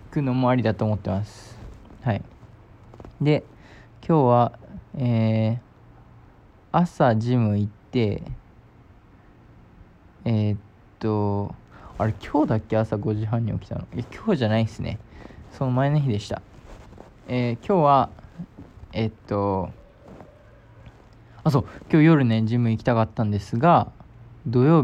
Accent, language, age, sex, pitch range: native, Japanese, 20-39, male, 105-125 Hz